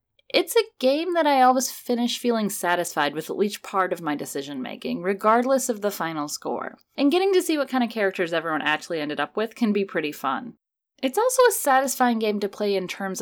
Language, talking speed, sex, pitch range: English, 220 wpm, female, 175-265 Hz